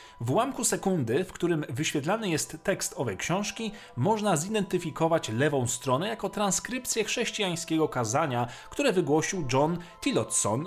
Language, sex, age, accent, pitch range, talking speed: Polish, male, 30-49, native, 125-180 Hz, 125 wpm